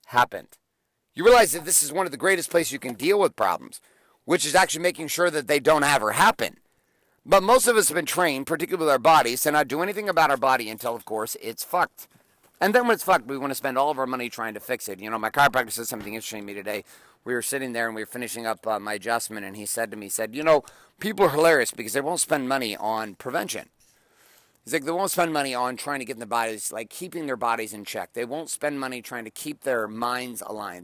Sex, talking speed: male, 265 wpm